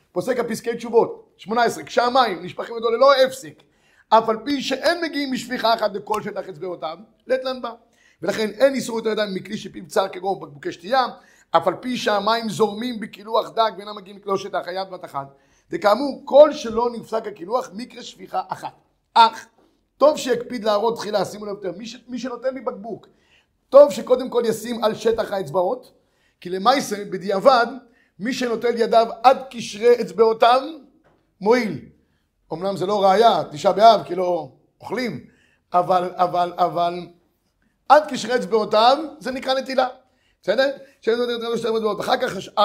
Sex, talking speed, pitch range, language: male, 155 wpm, 195-255 Hz, Hebrew